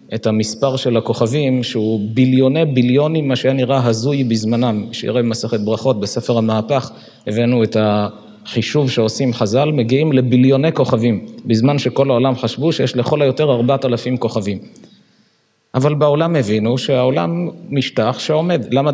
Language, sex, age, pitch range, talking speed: Hebrew, male, 50-69, 115-145 Hz, 135 wpm